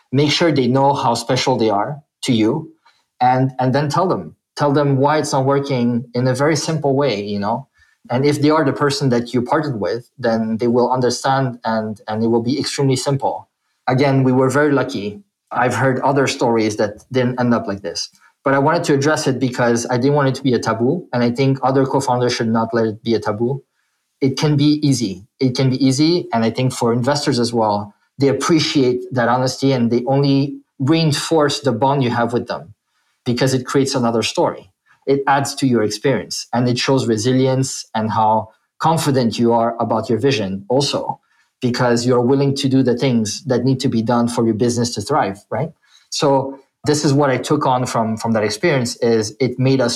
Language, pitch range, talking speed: English, 115-140 Hz, 210 wpm